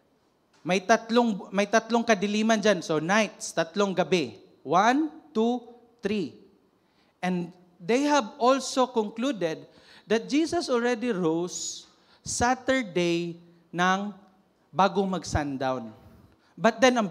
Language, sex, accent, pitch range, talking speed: English, male, Filipino, 175-250 Hz, 100 wpm